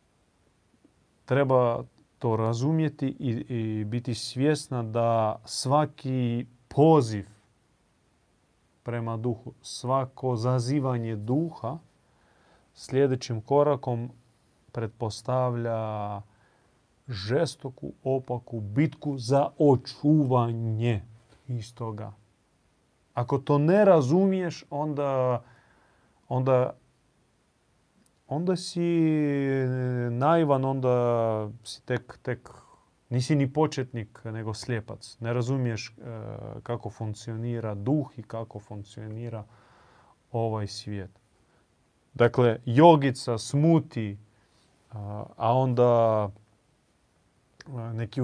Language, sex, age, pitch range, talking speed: Croatian, male, 30-49, 115-140 Hz, 70 wpm